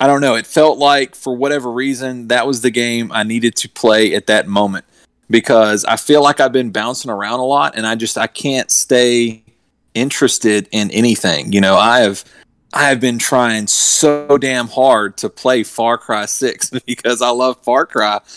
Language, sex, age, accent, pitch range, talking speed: English, male, 30-49, American, 105-135 Hz, 195 wpm